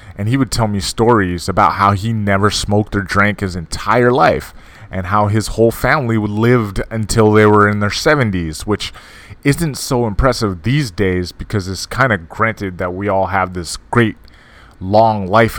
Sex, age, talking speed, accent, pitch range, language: male, 20-39, 180 wpm, American, 95-115 Hz, English